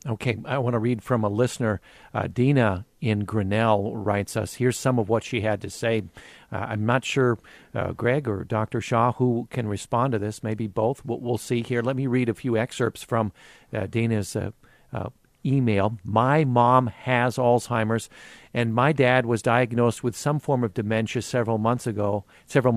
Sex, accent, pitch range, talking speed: male, American, 110-130 Hz, 190 wpm